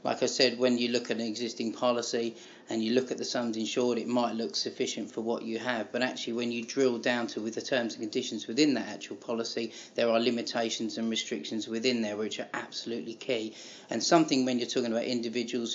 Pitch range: 115-120 Hz